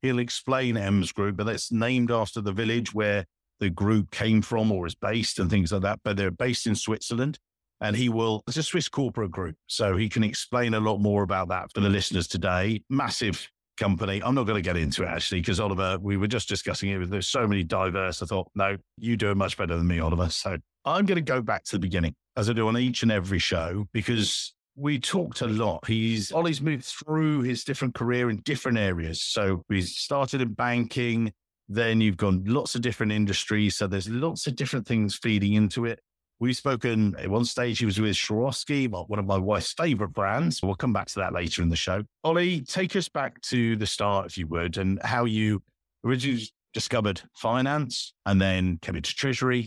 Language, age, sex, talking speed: English, 50-69, male, 215 wpm